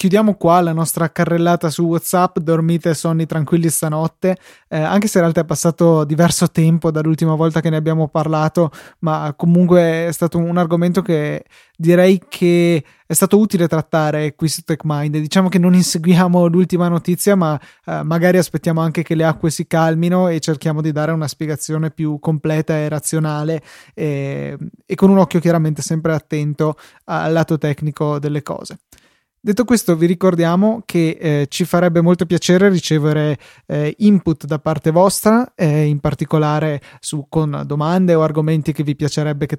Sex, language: male, Italian